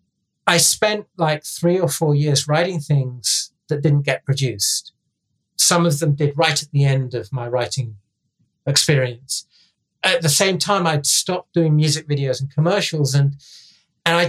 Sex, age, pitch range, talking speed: male, 40-59, 140-165 Hz, 165 wpm